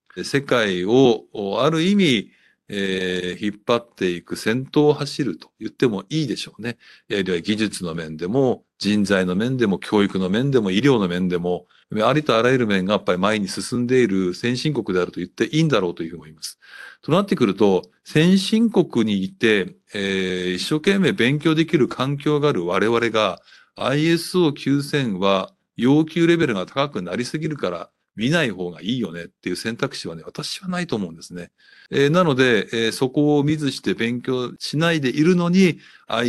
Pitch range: 100-150 Hz